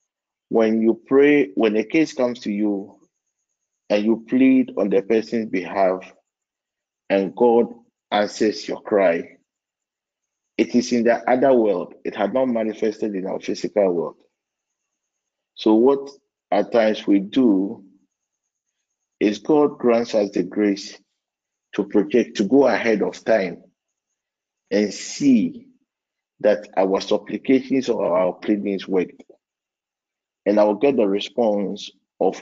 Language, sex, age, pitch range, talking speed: English, male, 50-69, 100-120 Hz, 130 wpm